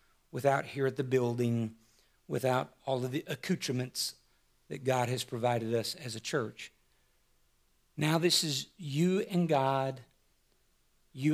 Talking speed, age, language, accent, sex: 130 wpm, 50-69, English, American, male